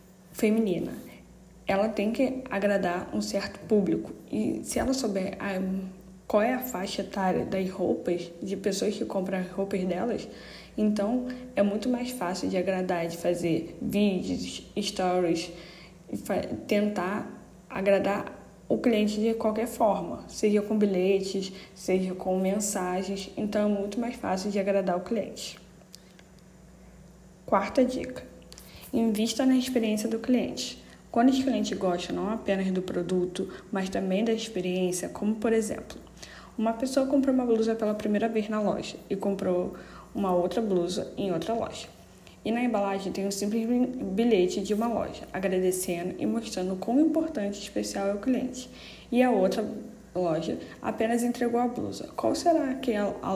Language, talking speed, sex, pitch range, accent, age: Portuguese, 150 wpm, female, 185-225 Hz, Brazilian, 10-29